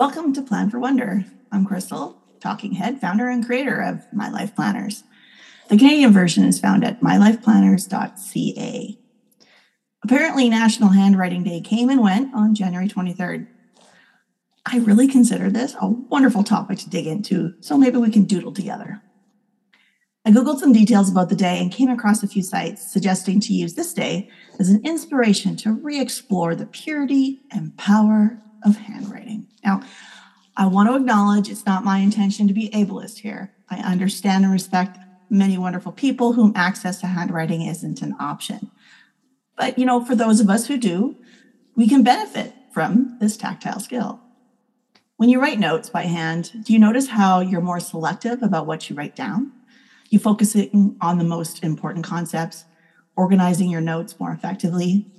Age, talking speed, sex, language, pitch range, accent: 30-49, 165 wpm, female, English, 190-240 Hz, American